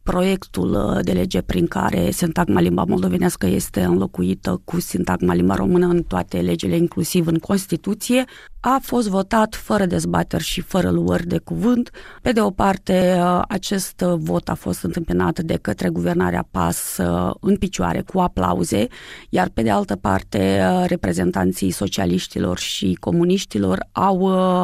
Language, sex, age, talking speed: Romanian, female, 30-49, 140 wpm